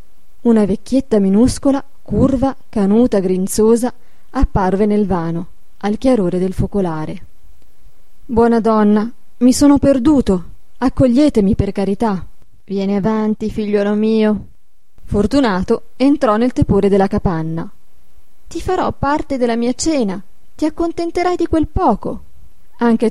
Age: 20-39